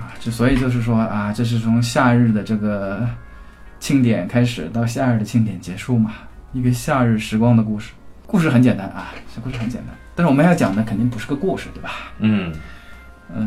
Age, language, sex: 20-39, Chinese, male